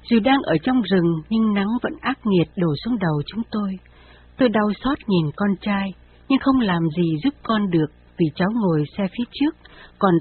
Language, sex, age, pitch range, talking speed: Vietnamese, female, 60-79, 170-235 Hz, 205 wpm